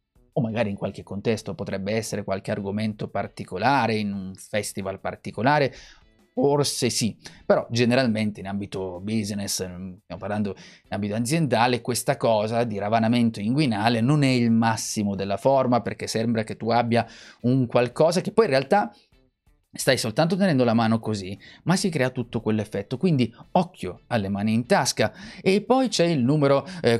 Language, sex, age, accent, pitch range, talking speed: Italian, male, 30-49, native, 110-150 Hz, 160 wpm